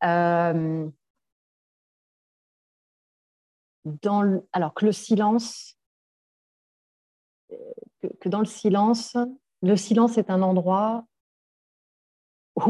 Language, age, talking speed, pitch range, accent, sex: French, 30-49, 85 wpm, 170-215 Hz, French, female